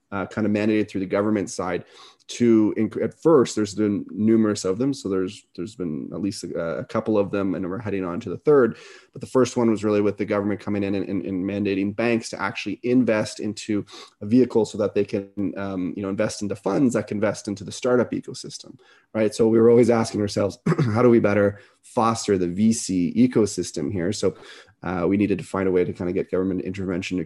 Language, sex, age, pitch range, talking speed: English, male, 30-49, 95-115 Hz, 230 wpm